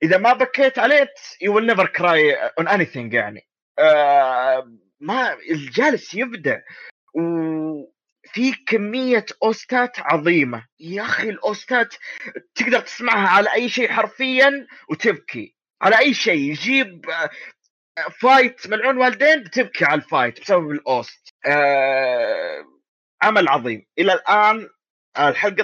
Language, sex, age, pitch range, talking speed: Arabic, male, 30-49, 165-250 Hz, 110 wpm